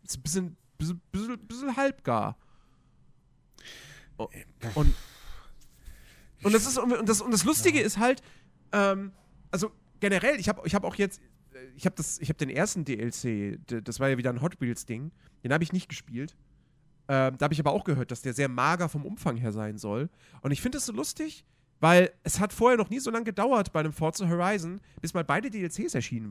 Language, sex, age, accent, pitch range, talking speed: German, male, 40-59, German, 135-200 Hz, 180 wpm